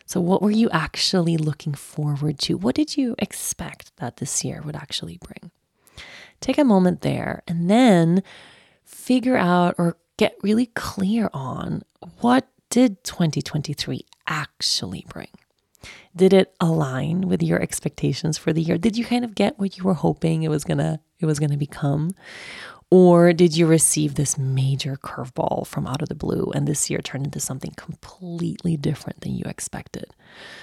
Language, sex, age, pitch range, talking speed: English, female, 30-49, 155-195 Hz, 170 wpm